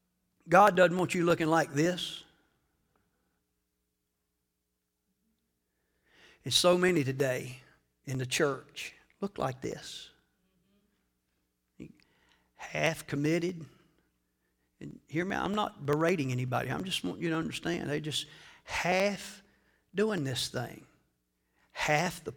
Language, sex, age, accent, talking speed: English, male, 50-69, American, 110 wpm